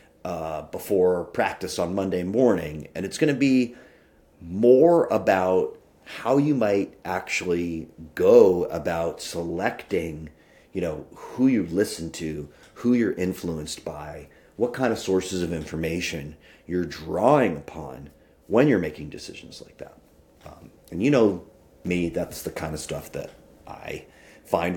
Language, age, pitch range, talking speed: English, 40-59, 80-105 Hz, 140 wpm